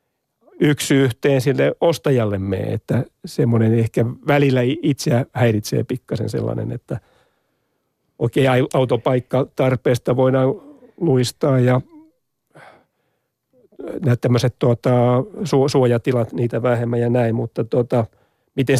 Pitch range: 115-140 Hz